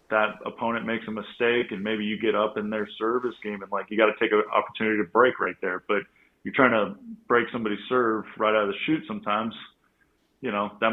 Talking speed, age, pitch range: 230 wpm, 20-39, 100-115 Hz